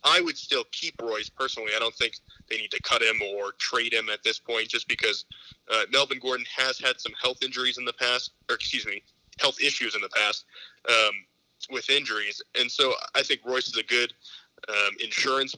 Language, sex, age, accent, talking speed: English, male, 20-39, American, 210 wpm